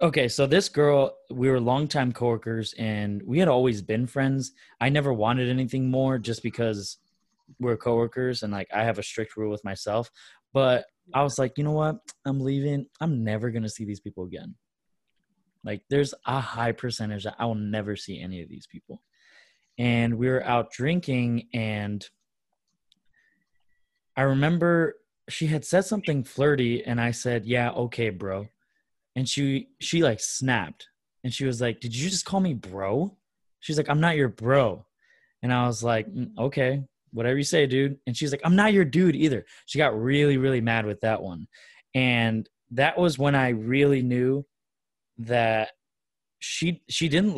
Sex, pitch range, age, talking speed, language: male, 115-140 Hz, 20-39, 175 wpm, English